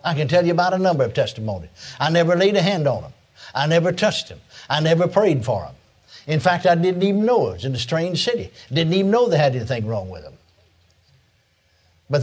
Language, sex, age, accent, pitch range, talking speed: English, male, 60-79, American, 125-170 Hz, 230 wpm